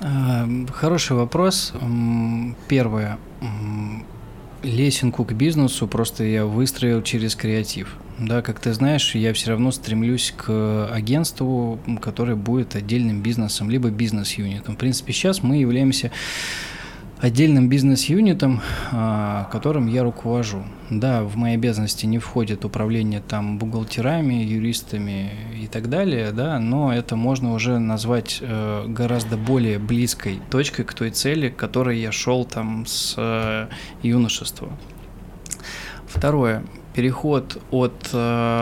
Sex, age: male, 20-39